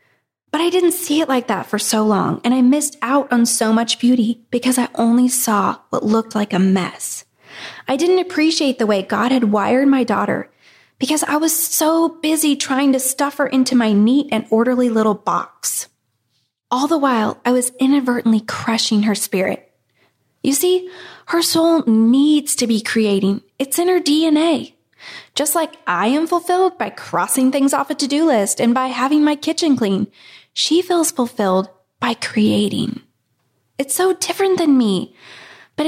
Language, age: English, 20-39